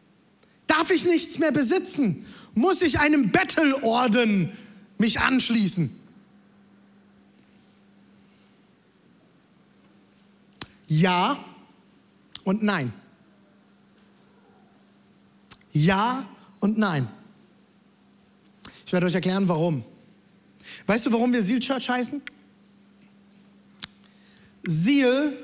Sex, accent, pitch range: male, German, 195-240 Hz